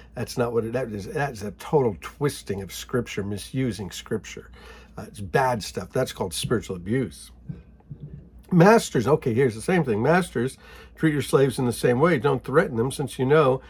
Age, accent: 50-69, American